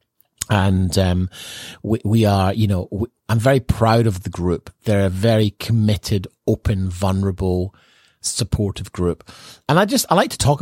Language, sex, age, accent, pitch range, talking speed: English, male, 30-49, British, 95-120 Hz, 165 wpm